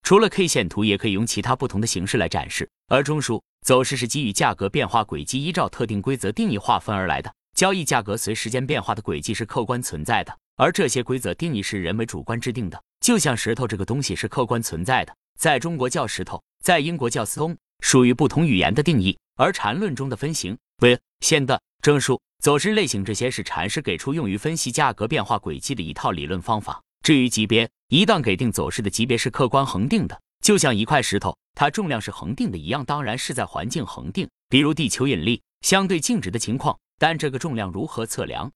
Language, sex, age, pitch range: Chinese, male, 30-49, 110-155 Hz